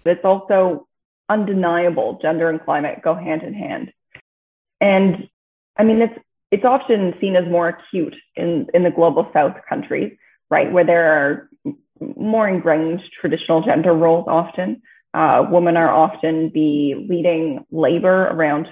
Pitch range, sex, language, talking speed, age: 165-195 Hz, female, English, 140 wpm, 20-39